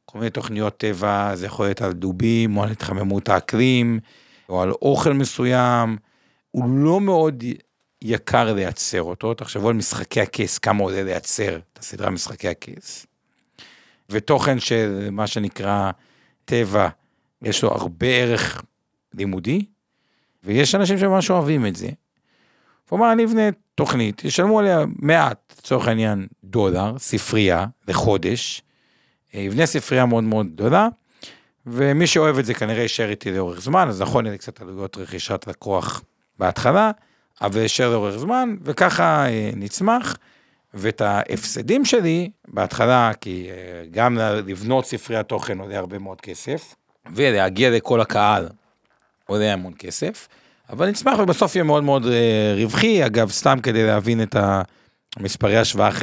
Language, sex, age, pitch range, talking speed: Hebrew, male, 50-69, 100-140 Hz, 135 wpm